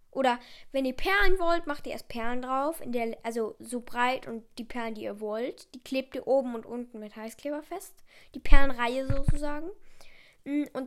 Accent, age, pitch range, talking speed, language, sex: German, 10-29, 245-320 Hz, 190 wpm, German, female